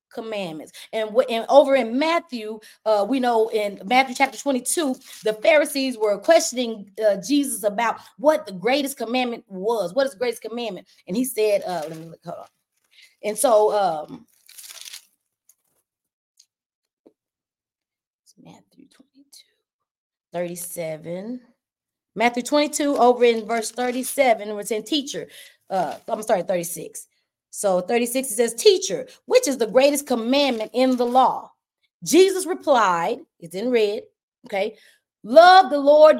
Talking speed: 140 wpm